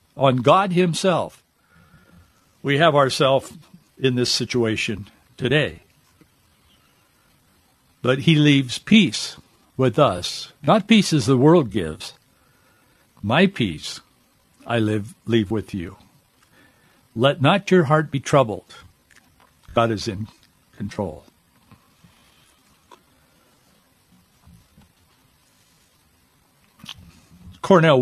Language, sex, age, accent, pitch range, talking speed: English, male, 60-79, American, 115-160 Hz, 85 wpm